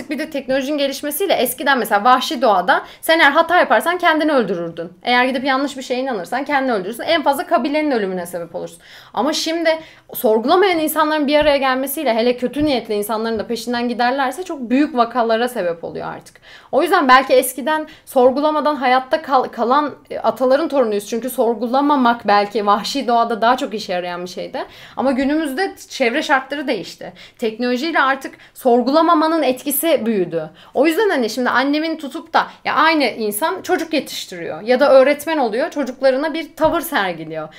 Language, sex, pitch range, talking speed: Turkish, female, 250-325 Hz, 160 wpm